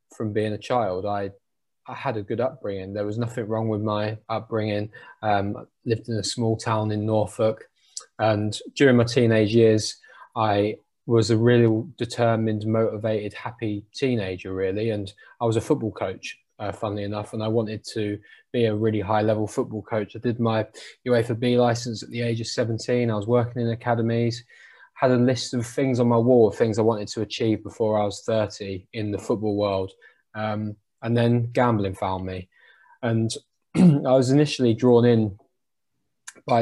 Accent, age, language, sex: British, 20-39, English, male